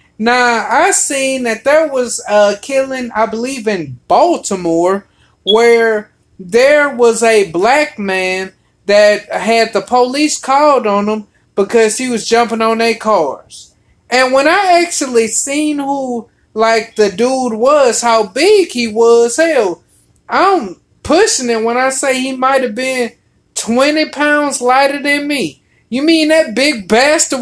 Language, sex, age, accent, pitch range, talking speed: English, male, 30-49, American, 225-295 Hz, 145 wpm